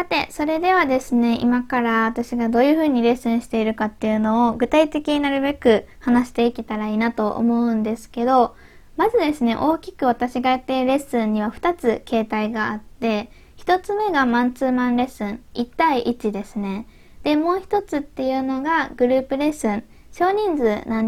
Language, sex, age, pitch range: Japanese, female, 20-39, 225-300 Hz